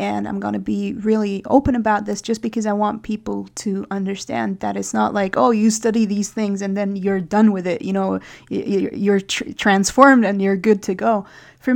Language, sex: English, female